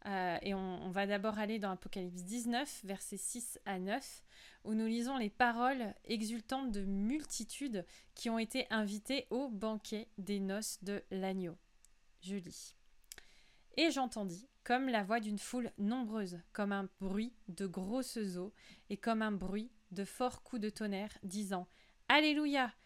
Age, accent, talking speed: 20-39, French, 160 wpm